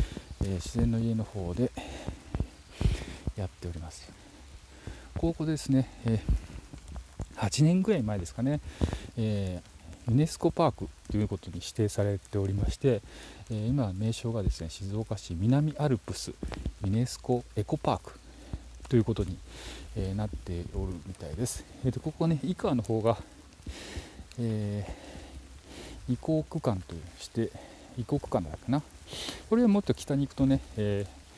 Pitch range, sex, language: 85-125 Hz, male, Japanese